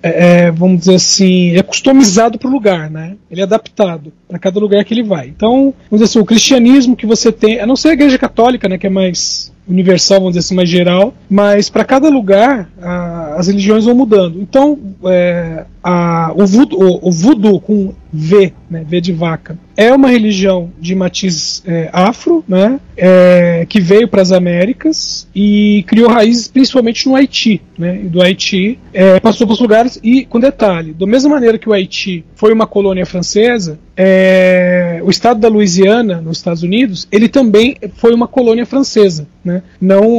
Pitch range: 180-230 Hz